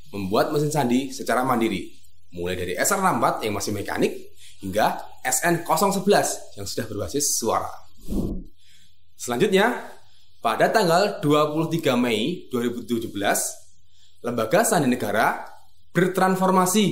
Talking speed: 95 wpm